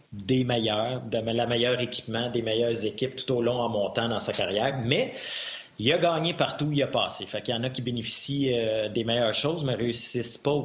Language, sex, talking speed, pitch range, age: French, male, 225 wpm, 105-125 Hz, 30-49